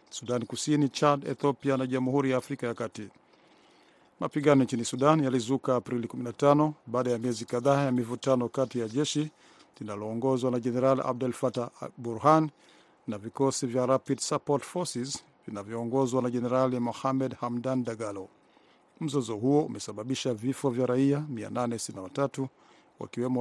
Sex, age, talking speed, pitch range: male, 50-69, 130 wpm, 120-140 Hz